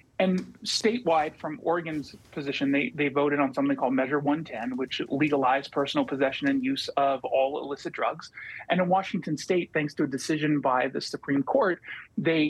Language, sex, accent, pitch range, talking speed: English, male, American, 140-175 Hz, 175 wpm